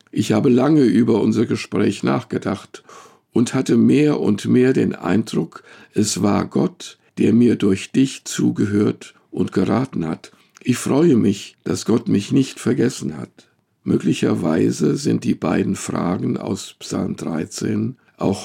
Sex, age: male, 50-69